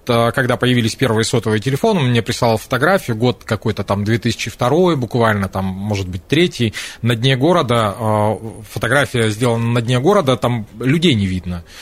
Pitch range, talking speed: 115-140 Hz, 145 wpm